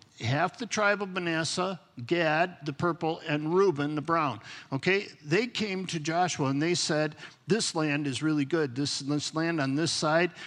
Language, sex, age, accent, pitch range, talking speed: English, male, 50-69, American, 145-185 Hz, 180 wpm